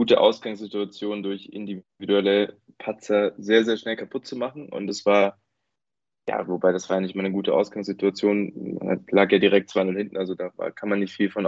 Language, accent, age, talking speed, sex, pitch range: German, German, 20-39, 200 wpm, male, 100-110 Hz